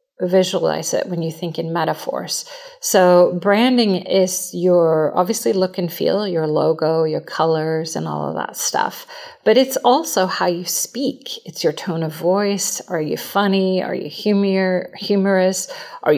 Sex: female